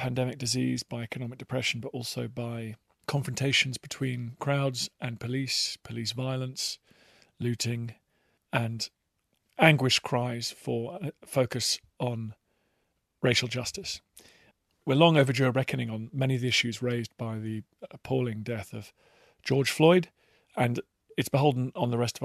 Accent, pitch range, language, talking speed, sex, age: British, 120-145 Hz, English, 135 wpm, male, 40-59